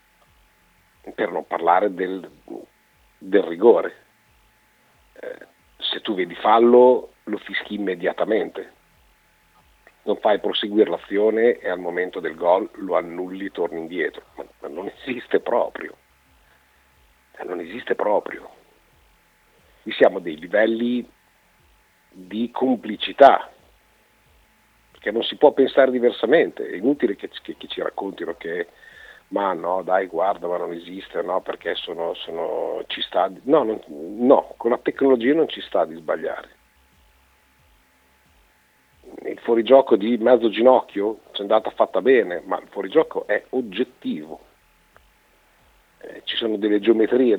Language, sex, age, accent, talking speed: Italian, male, 50-69, native, 130 wpm